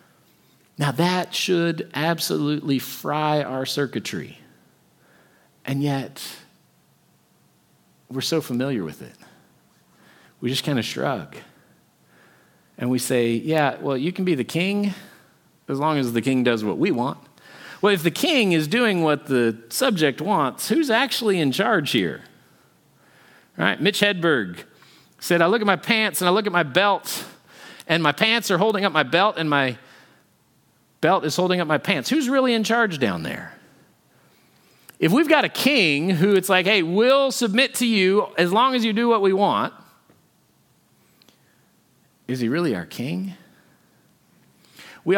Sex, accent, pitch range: male, American, 125-195 Hz